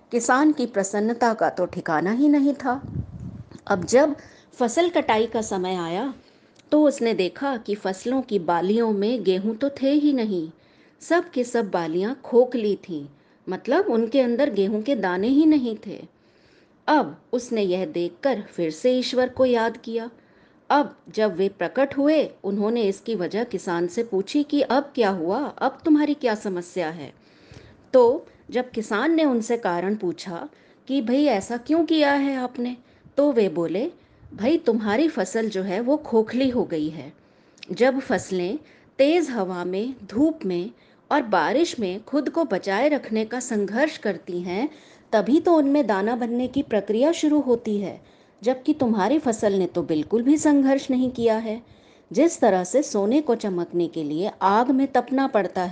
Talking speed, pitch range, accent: 165 wpm, 195-275 Hz, native